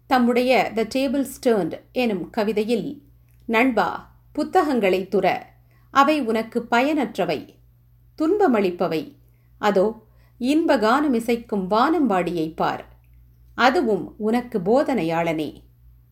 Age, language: 50-69, Tamil